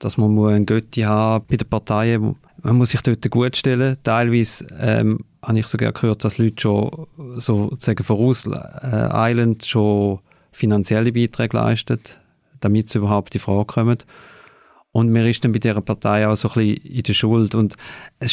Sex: male